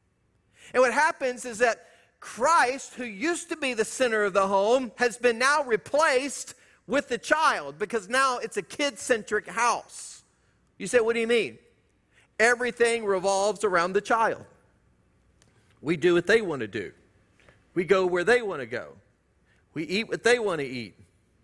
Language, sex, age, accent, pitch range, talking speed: English, male, 50-69, American, 205-260 Hz, 170 wpm